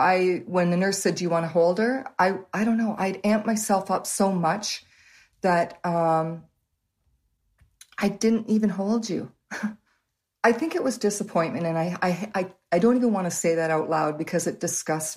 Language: English